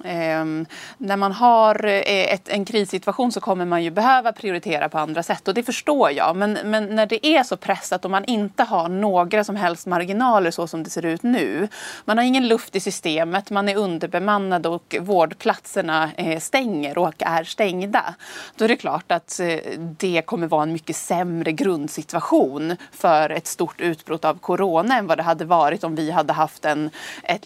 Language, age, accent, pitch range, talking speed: Swedish, 30-49, native, 165-210 Hz, 185 wpm